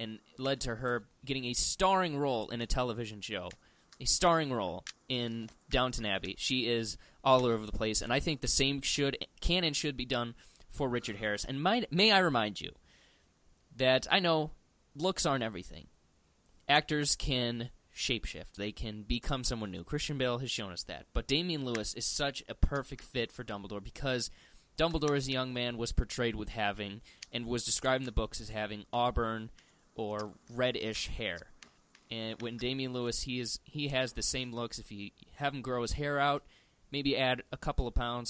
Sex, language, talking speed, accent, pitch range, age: male, English, 185 wpm, American, 110-130 Hz, 20-39